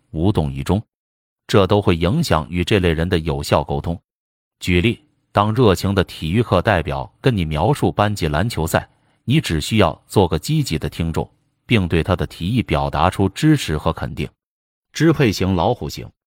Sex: male